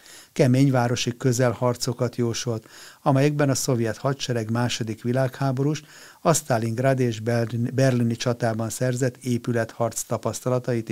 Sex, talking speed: male, 100 wpm